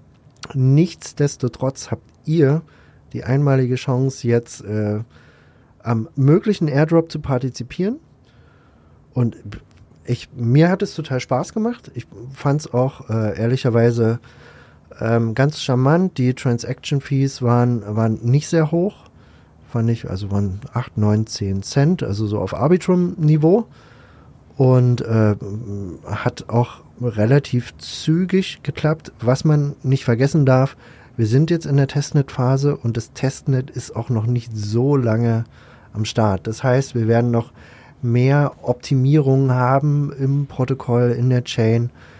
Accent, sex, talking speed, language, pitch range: German, male, 130 wpm, German, 115-140 Hz